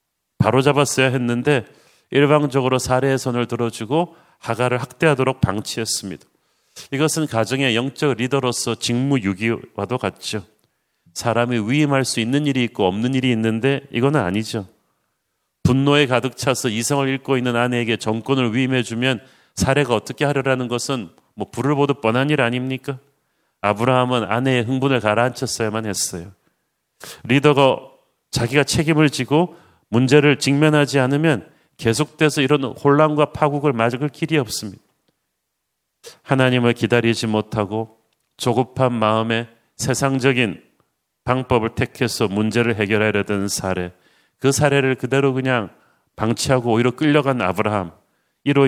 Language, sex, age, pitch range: Korean, male, 40-59, 115-140 Hz